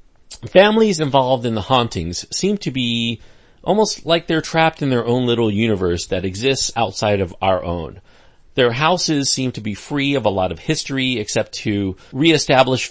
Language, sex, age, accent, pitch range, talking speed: English, male, 40-59, American, 105-135 Hz, 170 wpm